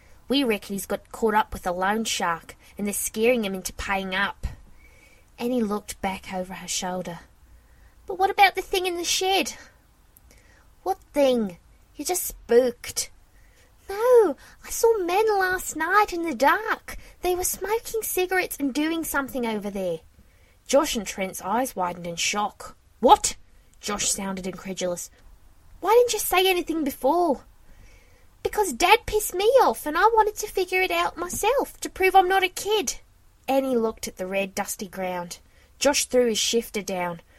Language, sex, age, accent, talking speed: English, female, 20-39, British, 165 wpm